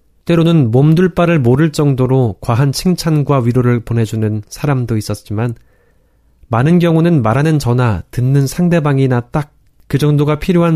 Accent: native